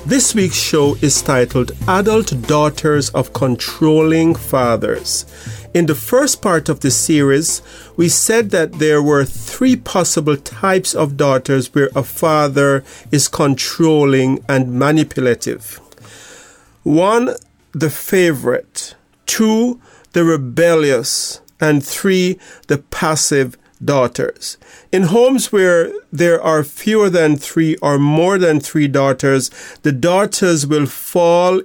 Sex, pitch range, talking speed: male, 145-180 Hz, 120 wpm